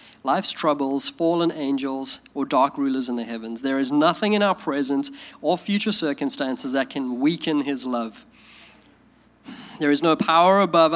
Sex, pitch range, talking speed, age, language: male, 140-195 Hz, 160 wpm, 20-39, English